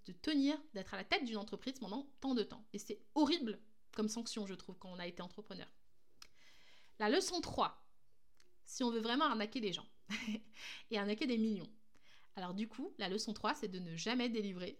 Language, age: French, 20-39